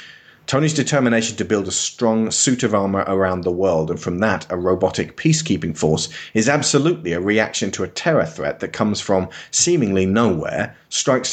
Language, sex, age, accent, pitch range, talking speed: English, male, 30-49, British, 90-115 Hz, 175 wpm